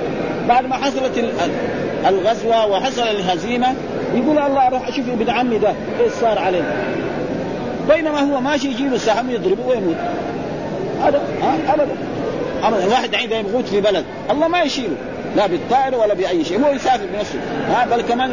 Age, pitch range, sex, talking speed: 50-69, 205-255 Hz, male, 140 wpm